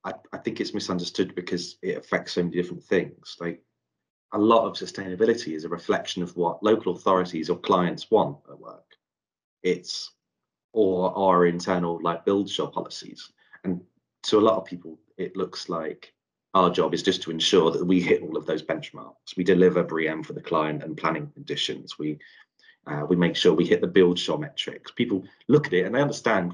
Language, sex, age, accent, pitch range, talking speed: English, male, 30-49, British, 85-95 Hz, 195 wpm